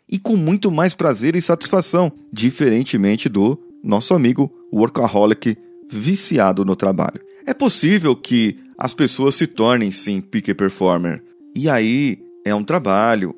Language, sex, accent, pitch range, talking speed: Portuguese, male, Brazilian, 105-165 Hz, 135 wpm